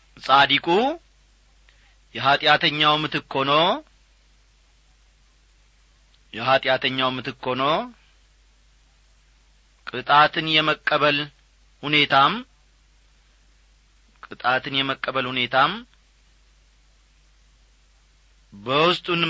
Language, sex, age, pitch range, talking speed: Amharic, male, 40-59, 135-210 Hz, 35 wpm